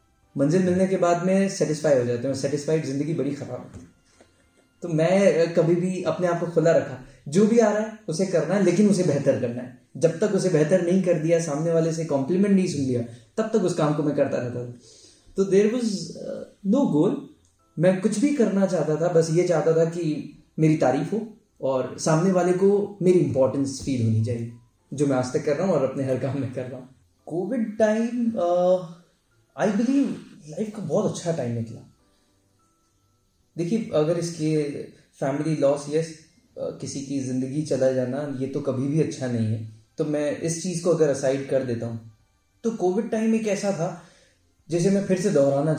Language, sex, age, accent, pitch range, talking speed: Hindi, male, 20-39, native, 130-185 Hz, 200 wpm